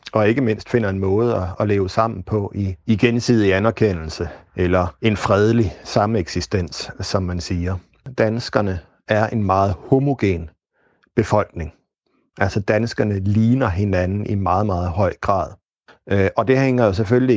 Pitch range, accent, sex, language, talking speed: 95-115 Hz, native, male, Danish, 140 wpm